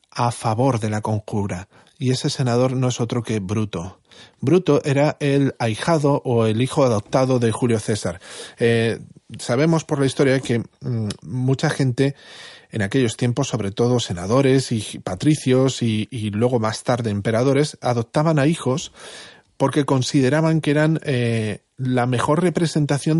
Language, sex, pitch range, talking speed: Spanish, male, 120-150 Hz, 150 wpm